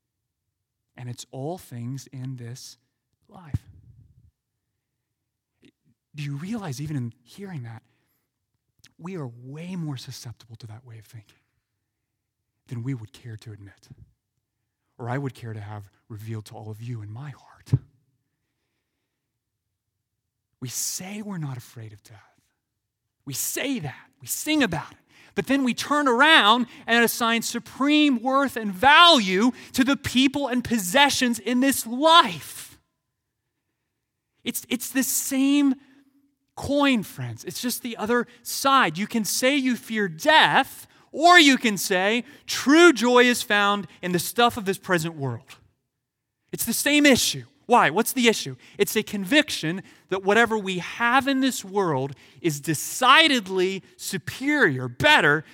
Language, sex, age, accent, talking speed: English, male, 30-49, American, 140 wpm